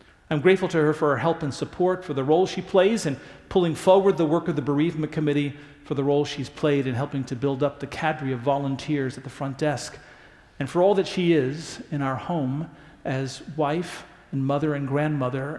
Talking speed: 215 wpm